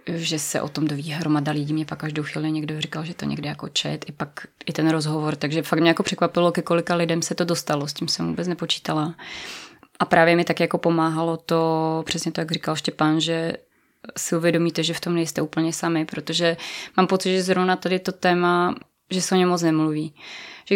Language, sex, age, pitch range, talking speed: Czech, female, 20-39, 160-175 Hz, 215 wpm